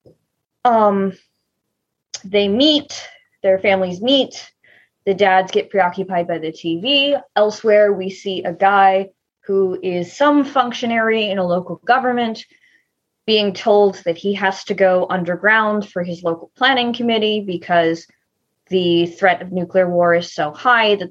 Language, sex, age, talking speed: English, female, 20-39, 140 wpm